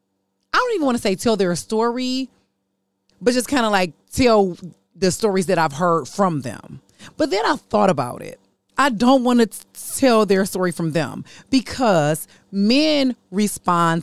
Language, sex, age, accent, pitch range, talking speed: English, female, 30-49, American, 155-205 Hz, 170 wpm